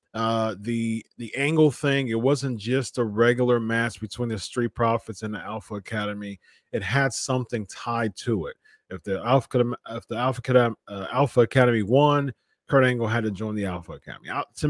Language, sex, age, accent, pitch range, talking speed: English, male, 30-49, American, 110-130 Hz, 185 wpm